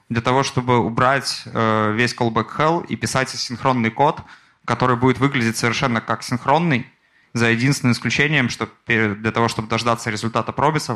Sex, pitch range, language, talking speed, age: male, 115-130 Hz, Russian, 155 wpm, 20-39